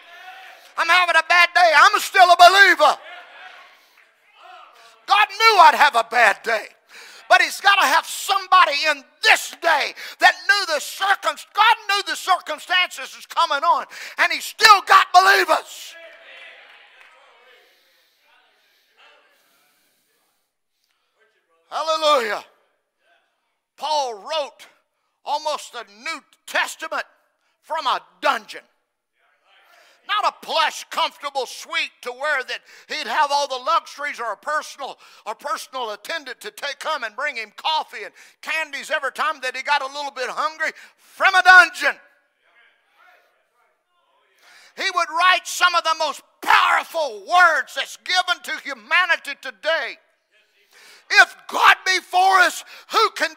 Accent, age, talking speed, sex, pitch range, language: American, 50-69, 125 wpm, male, 290-365 Hz, English